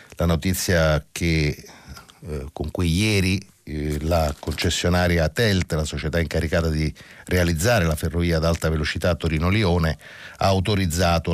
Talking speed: 130 wpm